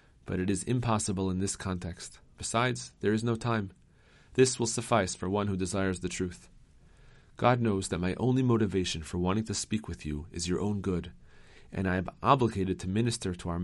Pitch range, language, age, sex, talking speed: 95-115 Hz, English, 40-59, male, 200 wpm